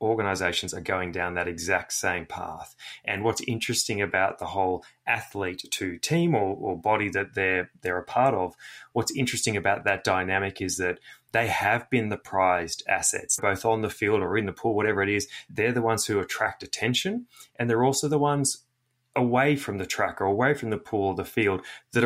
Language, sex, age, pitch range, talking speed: English, male, 20-39, 95-125 Hz, 200 wpm